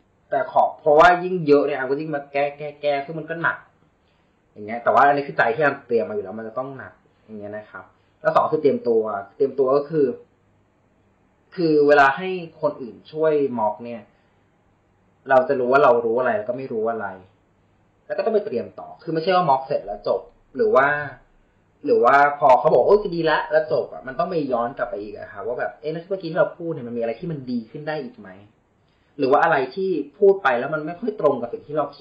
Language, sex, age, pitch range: Thai, male, 20-39, 120-170 Hz